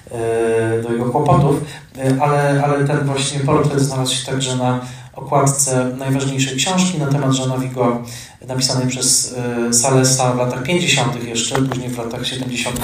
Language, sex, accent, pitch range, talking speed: Polish, male, native, 120-140 Hz, 135 wpm